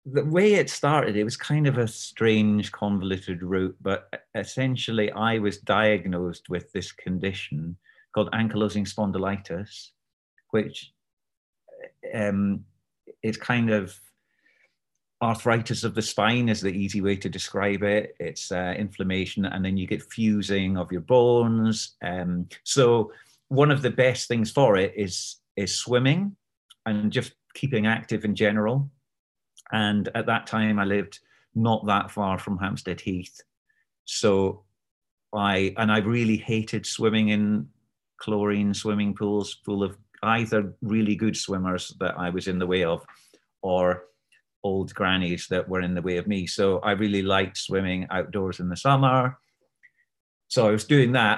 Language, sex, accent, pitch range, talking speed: English, male, British, 95-115 Hz, 150 wpm